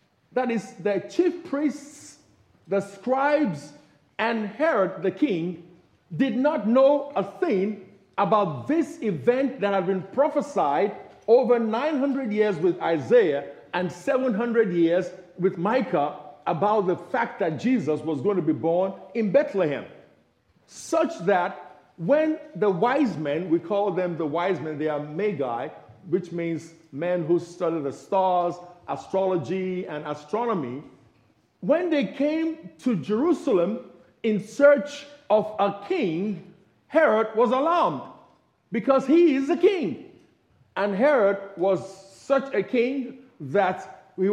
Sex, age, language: male, 50-69, English